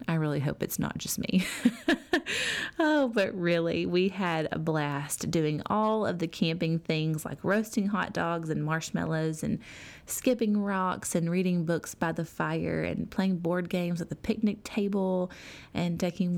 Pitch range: 160-195 Hz